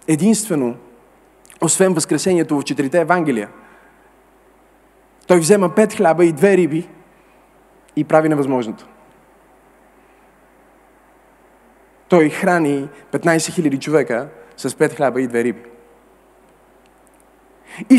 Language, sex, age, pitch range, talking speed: Bulgarian, male, 30-49, 175-265 Hz, 95 wpm